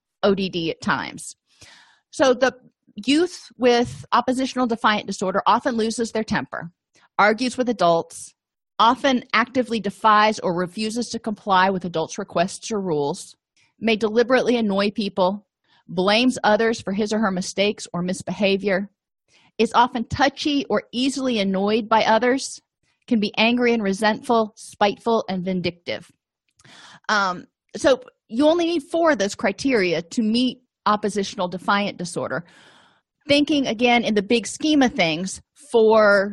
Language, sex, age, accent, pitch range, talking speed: English, female, 40-59, American, 185-240 Hz, 135 wpm